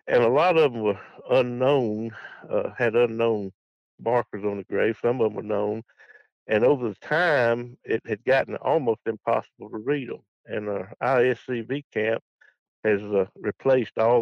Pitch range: 110-140 Hz